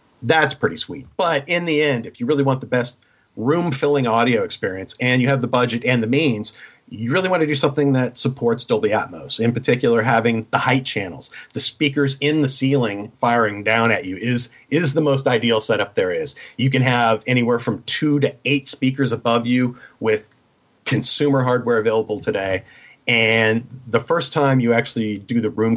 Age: 40-59